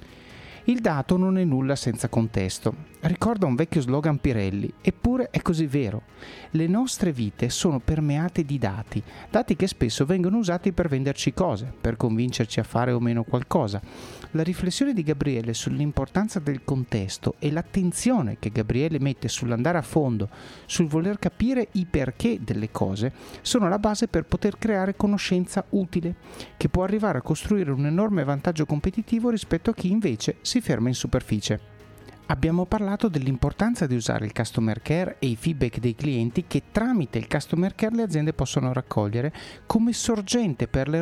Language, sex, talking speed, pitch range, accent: Italian, male, 160 wpm, 125-195 Hz, native